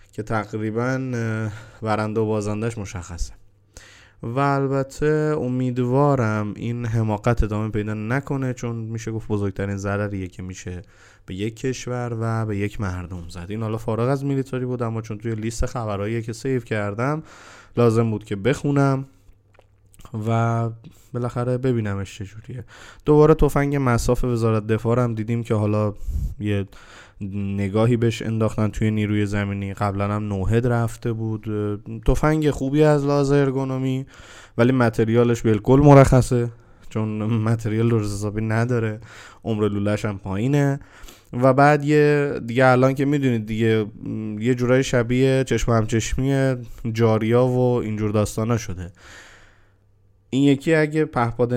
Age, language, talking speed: 20-39, Persian, 130 wpm